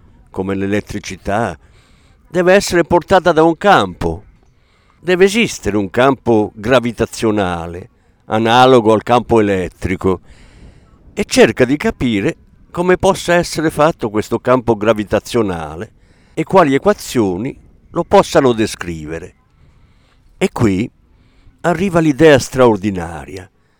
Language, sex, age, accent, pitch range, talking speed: Italian, male, 50-69, native, 100-150 Hz, 100 wpm